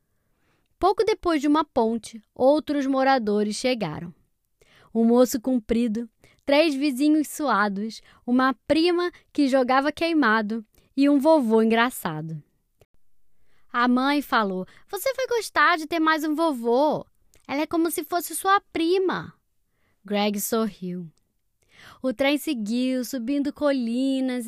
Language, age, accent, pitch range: Portuguese, 20-39, Brazilian, 215-295 Hz